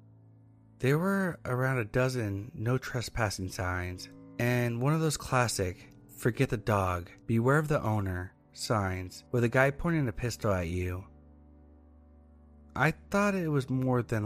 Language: English